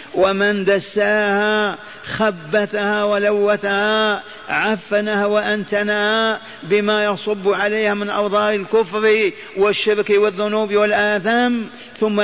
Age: 50-69